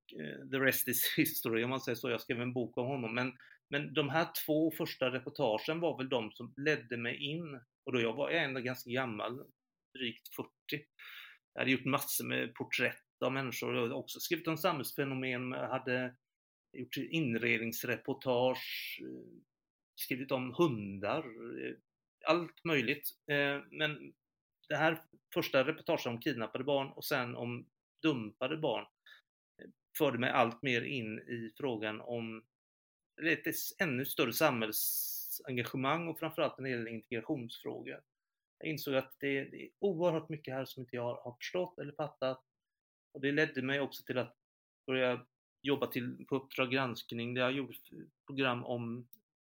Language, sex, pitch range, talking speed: Swedish, male, 120-145 Hz, 145 wpm